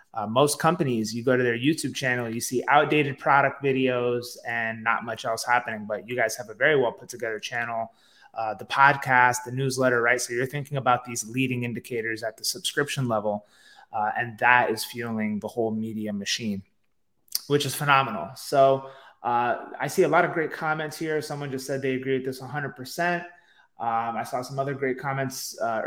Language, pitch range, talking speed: English, 115-140 Hz, 195 wpm